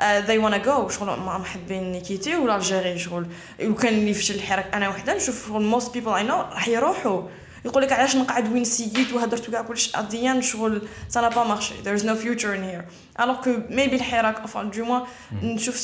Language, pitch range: Arabic, 200-260 Hz